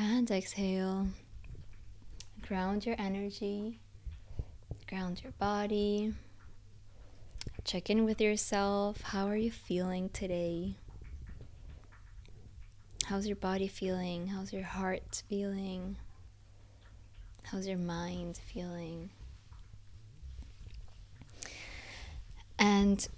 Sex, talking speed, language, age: female, 80 wpm, English, 20-39